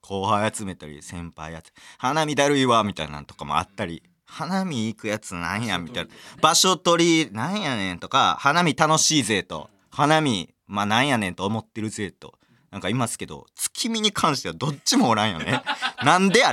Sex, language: male, Japanese